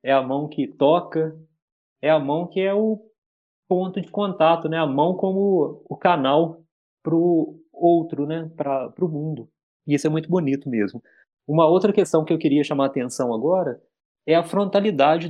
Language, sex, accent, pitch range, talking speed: Portuguese, male, Brazilian, 135-170 Hz, 180 wpm